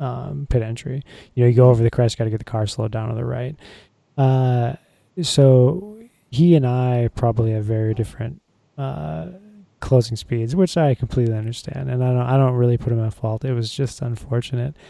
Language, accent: English, American